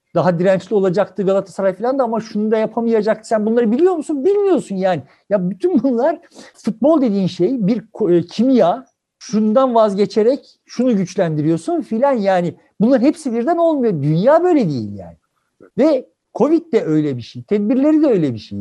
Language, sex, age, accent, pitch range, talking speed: Turkish, male, 60-79, native, 185-265 Hz, 160 wpm